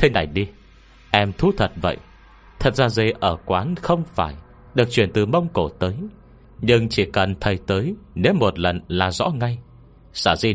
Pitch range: 90-125 Hz